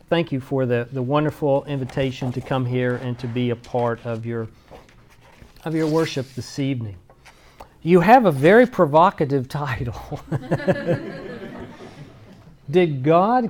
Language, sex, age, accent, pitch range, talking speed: English, male, 40-59, American, 135-180 Hz, 135 wpm